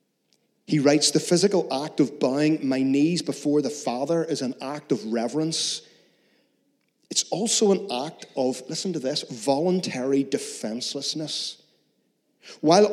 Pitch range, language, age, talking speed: 130-165 Hz, English, 40-59, 130 wpm